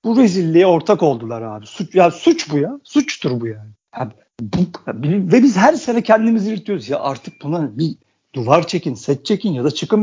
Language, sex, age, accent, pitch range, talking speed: Turkish, male, 50-69, native, 145-205 Hz, 195 wpm